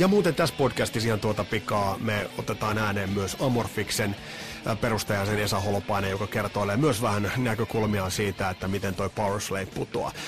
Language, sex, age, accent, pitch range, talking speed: Finnish, male, 30-49, native, 110-145 Hz, 150 wpm